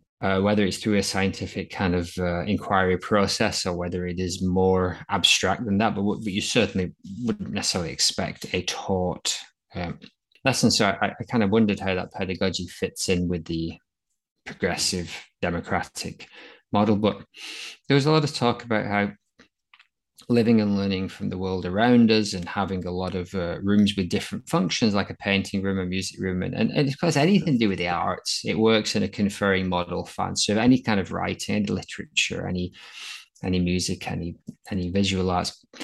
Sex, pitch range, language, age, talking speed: male, 90-105 Hz, English, 20-39, 185 wpm